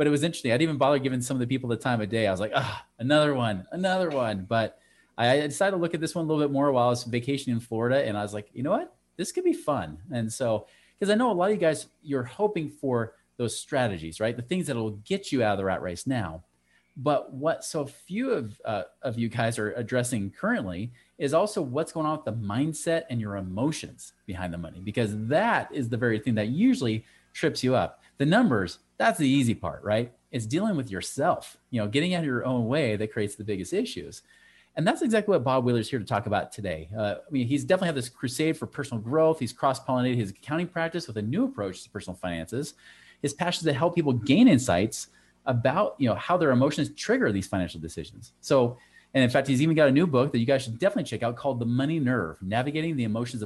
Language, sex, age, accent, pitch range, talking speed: English, male, 30-49, American, 110-150 Hz, 245 wpm